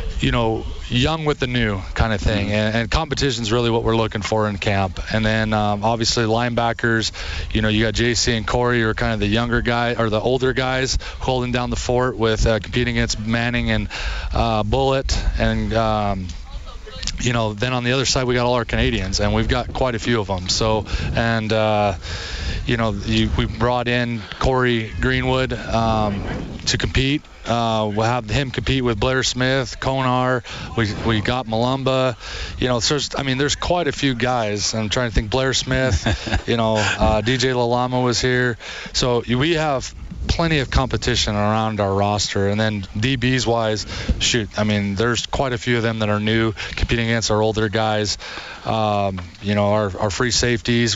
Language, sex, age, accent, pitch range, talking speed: English, male, 20-39, American, 105-125 Hz, 190 wpm